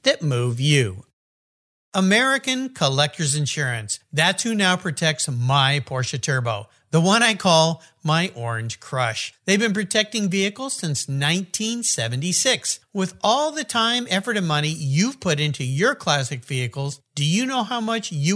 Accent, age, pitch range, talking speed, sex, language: American, 50-69, 140-205 Hz, 145 wpm, male, English